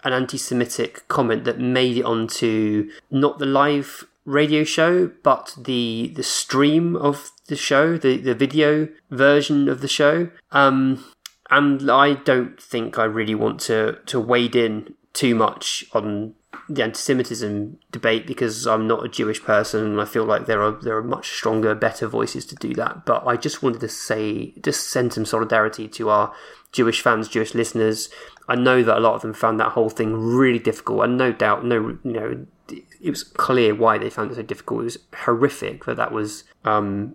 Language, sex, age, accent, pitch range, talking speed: English, male, 20-39, British, 110-140 Hz, 190 wpm